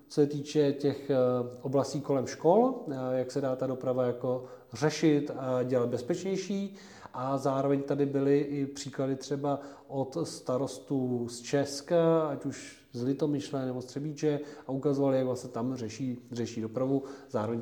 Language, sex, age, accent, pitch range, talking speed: Czech, male, 40-59, native, 125-155 Hz, 155 wpm